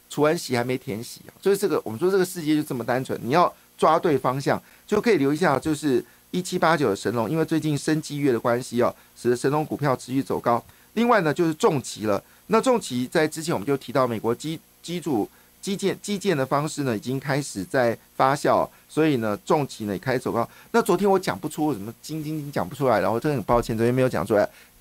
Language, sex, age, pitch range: Chinese, male, 50-69, 120-170 Hz